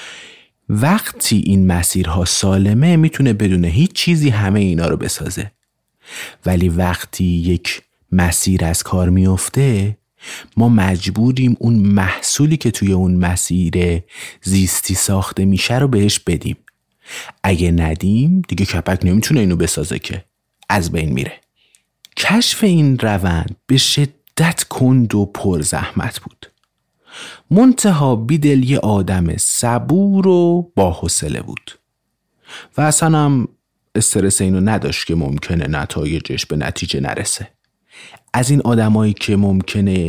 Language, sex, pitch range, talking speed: Persian, male, 90-120 Hz, 120 wpm